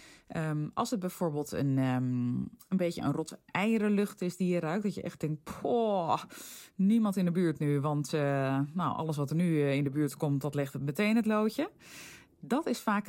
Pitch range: 135-185 Hz